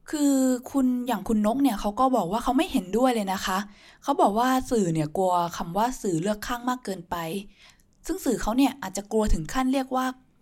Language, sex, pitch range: Thai, female, 190-255 Hz